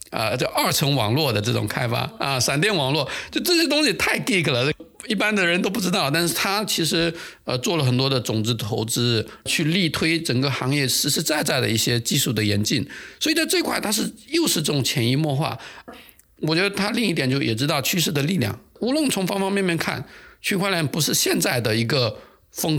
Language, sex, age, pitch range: Chinese, male, 50-69, 130-185 Hz